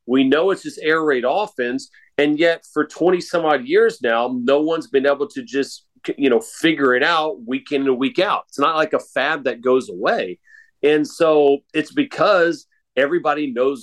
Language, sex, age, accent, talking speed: English, male, 40-59, American, 195 wpm